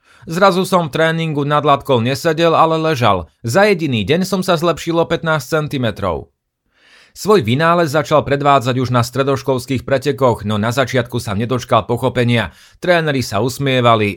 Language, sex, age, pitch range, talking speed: Slovak, male, 30-49, 115-150 Hz, 145 wpm